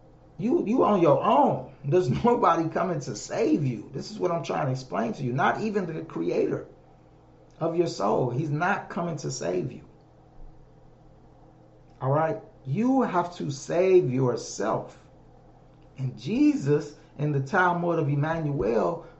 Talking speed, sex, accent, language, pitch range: 145 wpm, male, American, English, 145-190 Hz